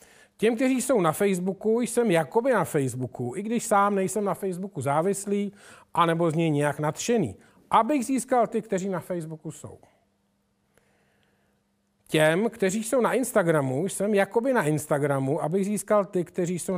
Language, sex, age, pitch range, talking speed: Czech, male, 40-59, 145-195 Hz, 150 wpm